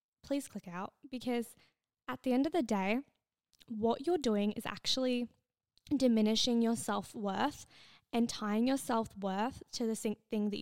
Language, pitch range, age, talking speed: English, 215-240 Hz, 20-39, 145 wpm